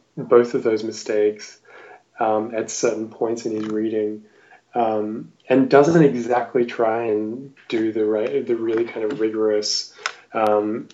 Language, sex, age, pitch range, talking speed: English, male, 10-29, 110-130 Hz, 145 wpm